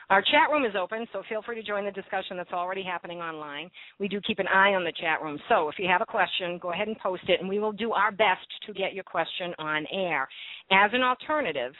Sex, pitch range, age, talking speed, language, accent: female, 175-215 Hz, 50-69, 260 wpm, English, American